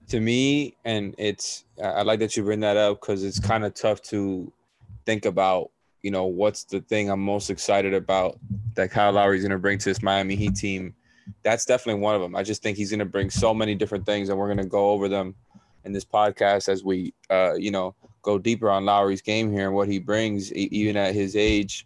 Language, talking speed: English, 230 wpm